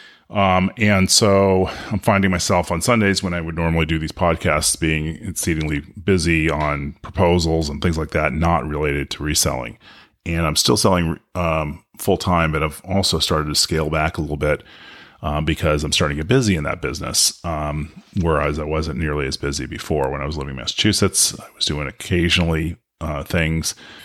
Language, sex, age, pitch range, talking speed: English, male, 30-49, 75-95 Hz, 185 wpm